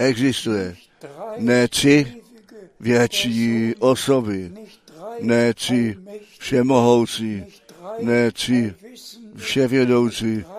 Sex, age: male, 60-79